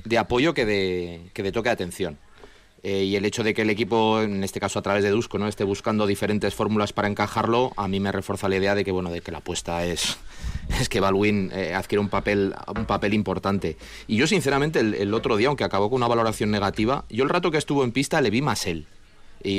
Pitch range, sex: 100-115 Hz, male